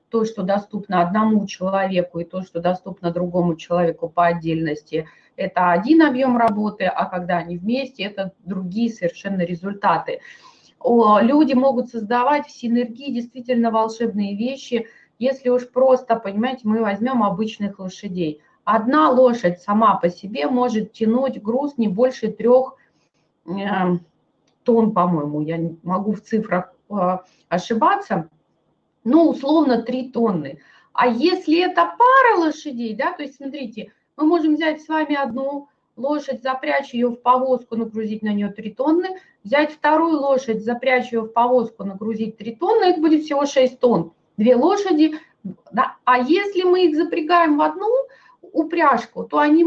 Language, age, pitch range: Russian, 30-49, 200-290 Hz